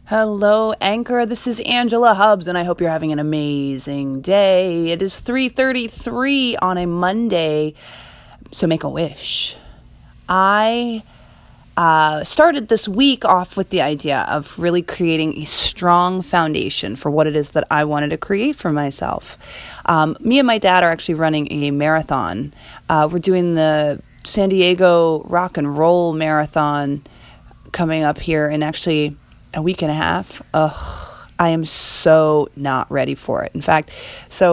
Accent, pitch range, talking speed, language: American, 150-195 Hz, 160 wpm, English